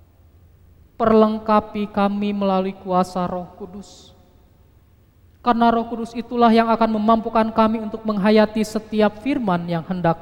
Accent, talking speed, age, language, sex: native, 115 wpm, 20-39, Indonesian, male